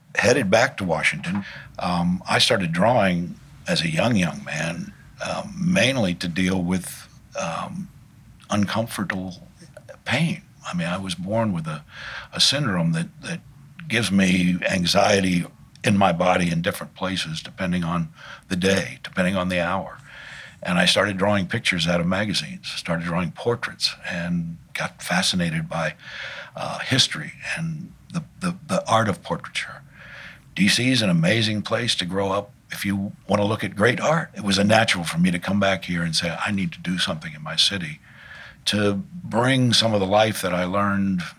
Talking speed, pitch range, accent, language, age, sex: 170 wpm, 90-135 Hz, American, English, 60-79, male